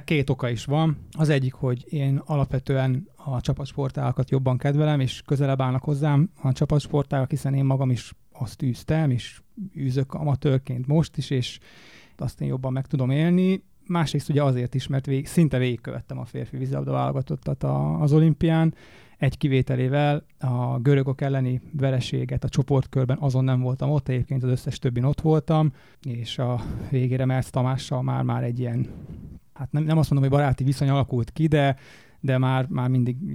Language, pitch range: Hungarian, 125-145 Hz